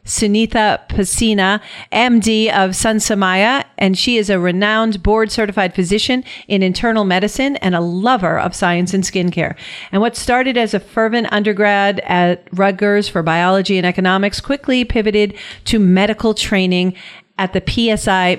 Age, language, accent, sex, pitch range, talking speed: 40-59, English, American, female, 185-220 Hz, 145 wpm